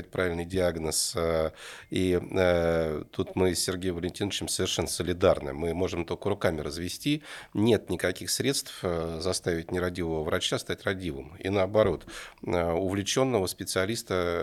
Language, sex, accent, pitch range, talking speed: Russian, male, native, 85-105 Hz, 110 wpm